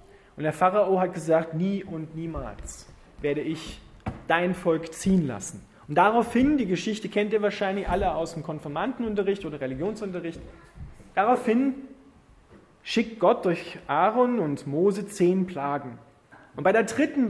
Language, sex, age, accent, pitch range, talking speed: German, male, 30-49, German, 155-210 Hz, 140 wpm